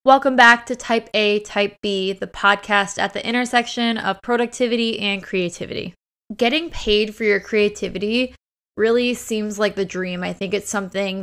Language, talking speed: English, 160 wpm